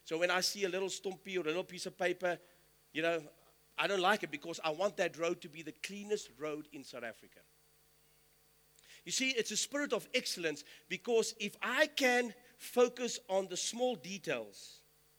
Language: English